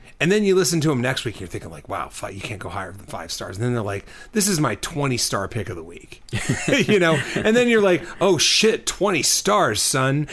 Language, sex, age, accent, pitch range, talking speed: English, male, 30-49, American, 110-145 Hz, 255 wpm